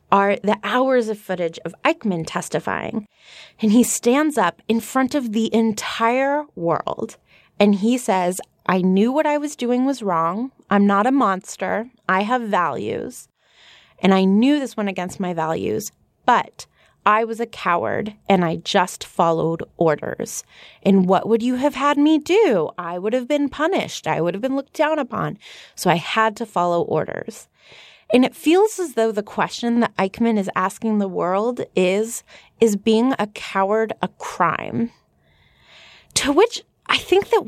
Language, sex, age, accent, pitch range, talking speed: English, female, 20-39, American, 195-265 Hz, 170 wpm